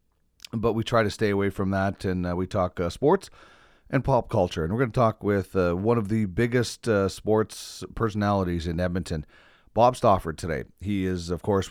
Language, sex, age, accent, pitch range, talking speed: English, male, 30-49, American, 90-120 Hz, 205 wpm